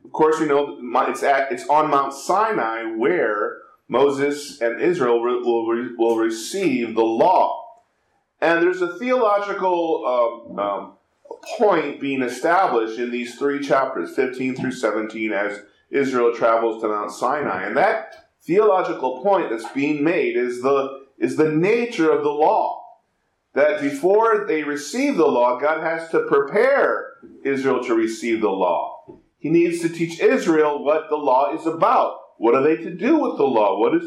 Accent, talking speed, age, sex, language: American, 165 wpm, 40-59, male, English